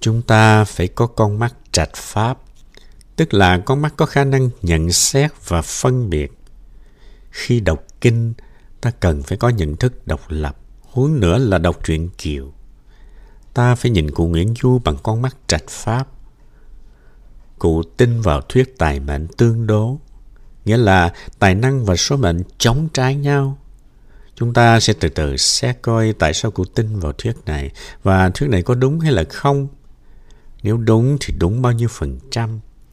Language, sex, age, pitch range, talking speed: Vietnamese, male, 60-79, 80-125 Hz, 175 wpm